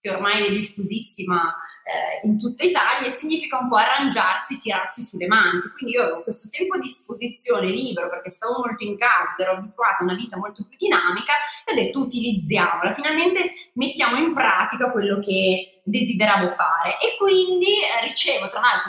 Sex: female